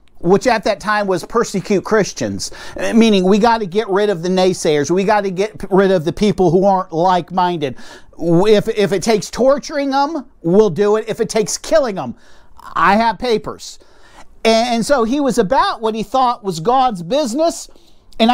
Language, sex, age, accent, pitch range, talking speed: English, male, 50-69, American, 185-255 Hz, 180 wpm